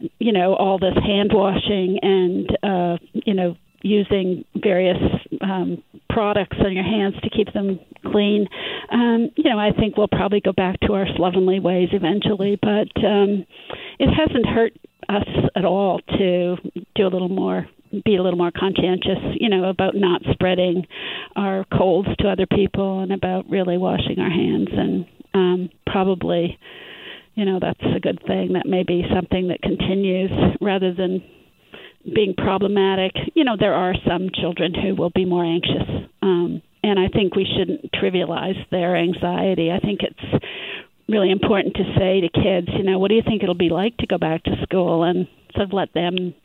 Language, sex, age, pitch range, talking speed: English, female, 50-69, 180-200 Hz, 175 wpm